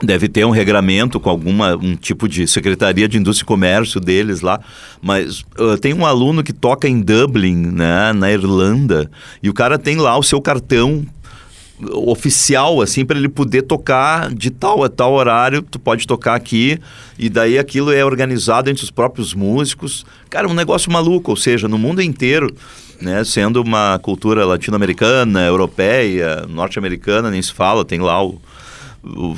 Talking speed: 170 wpm